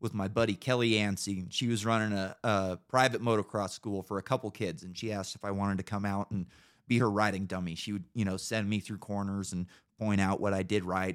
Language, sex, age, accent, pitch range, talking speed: English, male, 30-49, American, 95-120 Hz, 250 wpm